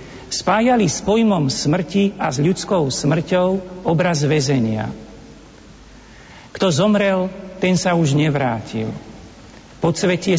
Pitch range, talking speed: 145-180 Hz, 100 wpm